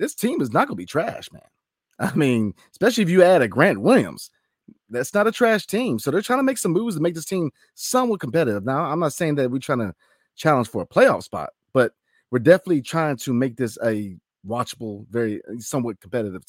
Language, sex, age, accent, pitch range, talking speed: English, male, 30-49, American, 115-170 Hz, 220 wpm